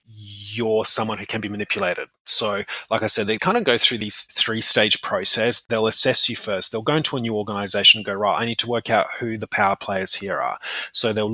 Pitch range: 110-125 Hz